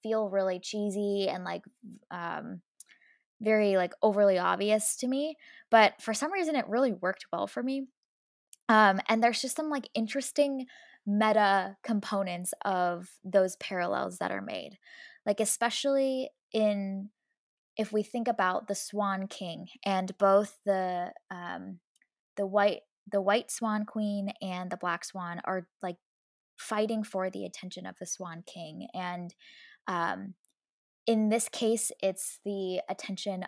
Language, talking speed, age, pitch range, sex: English, 140 wpm, 10-29, 185-230 Hz, female